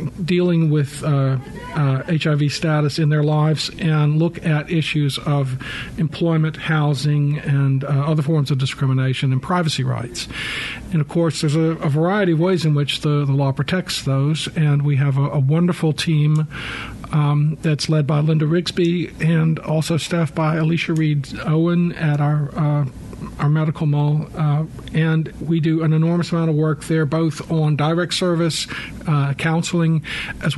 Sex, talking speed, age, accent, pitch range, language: male, 165 wpm, 50-69, American, 145-165 Hz, English